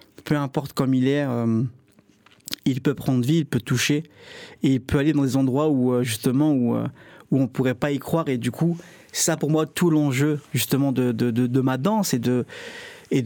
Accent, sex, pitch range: French, male, 125-150 Hz